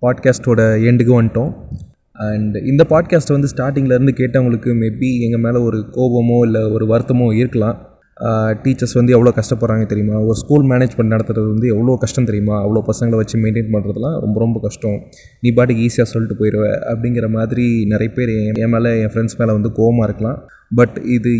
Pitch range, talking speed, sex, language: 110-130 Hz, 165 wpm, male, Tamil